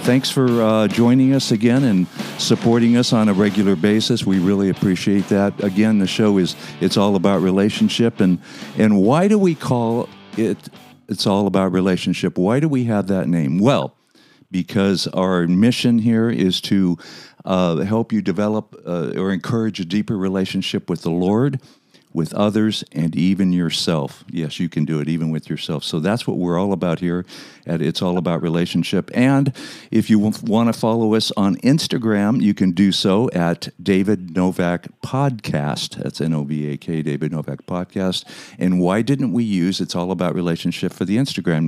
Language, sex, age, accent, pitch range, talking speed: English, male, 60-79, American, 90-110 Hz, 175 wpm